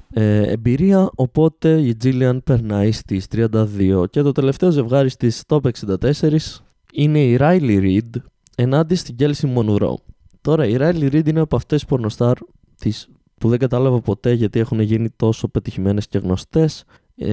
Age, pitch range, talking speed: 20-39, 105-135 Hz, 150 wpm